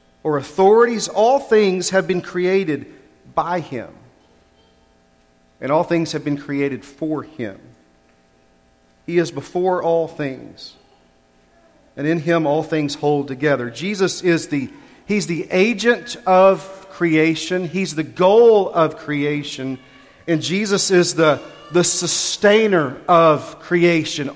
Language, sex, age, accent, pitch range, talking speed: English, male, 40-59, American, 155-215 Hz, 125 wpm